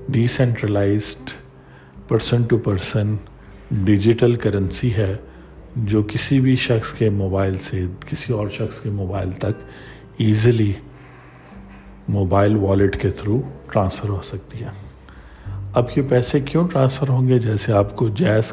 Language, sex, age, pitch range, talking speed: Urdu, male, 50-69, 100-120 Hz, 135 wpm